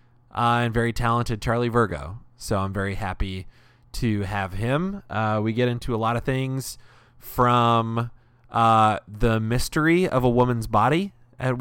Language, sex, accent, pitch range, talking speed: English, male, American, 110-130 Hz, 155 wpm